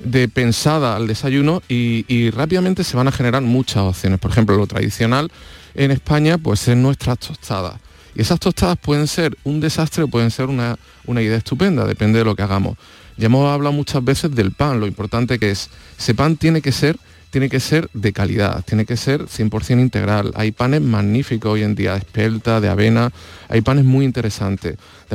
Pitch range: 110-135 Hz